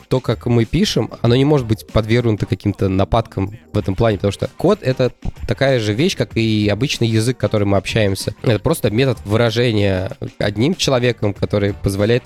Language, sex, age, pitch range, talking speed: Russian, male, 20-39, 105-120 Hz, 180 wpm